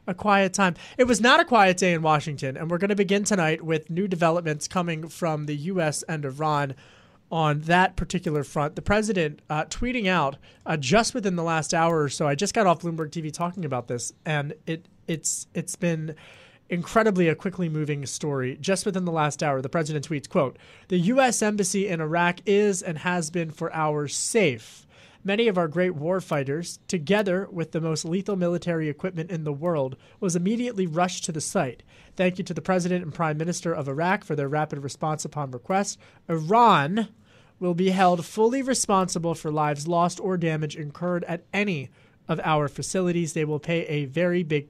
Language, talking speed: English, 190 wpm